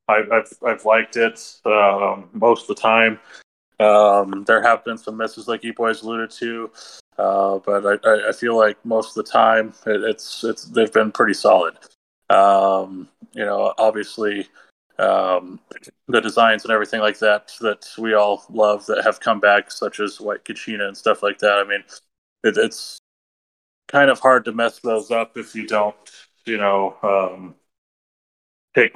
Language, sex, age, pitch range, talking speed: English, male, 20-39, 100-110 Hz, 175 wpm